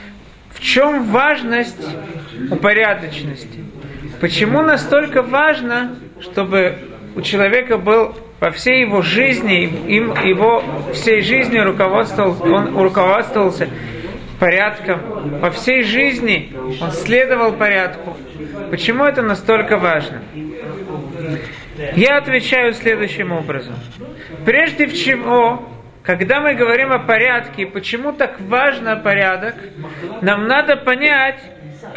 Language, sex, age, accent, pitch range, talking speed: Russian, male, 40-59, native, 180-250 Hz, 95 wpm